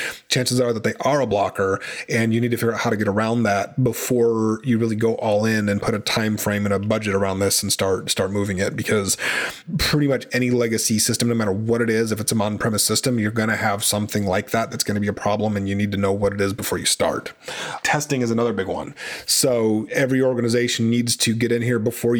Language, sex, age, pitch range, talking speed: English, male, 30-49, 105-125 Hz, 250 wpm